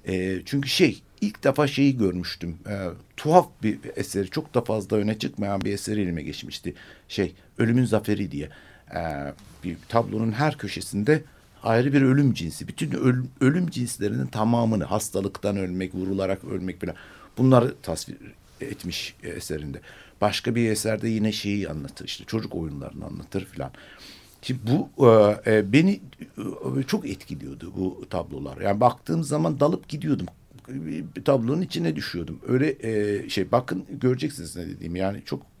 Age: 60-79